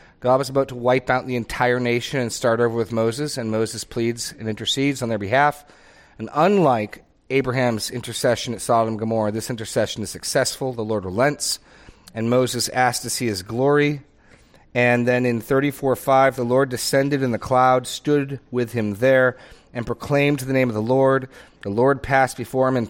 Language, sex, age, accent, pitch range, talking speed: English, male, 40-59, American, 110-135 Hz, 190 wpm